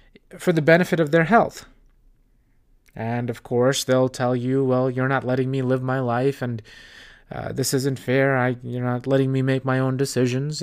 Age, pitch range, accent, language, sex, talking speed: 20-39, 130-160 Hz, American, English, male, 190 wpm